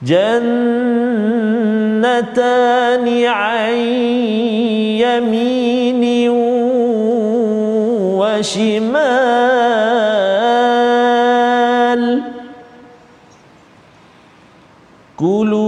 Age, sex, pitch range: 40-59, male, 210-240 Hz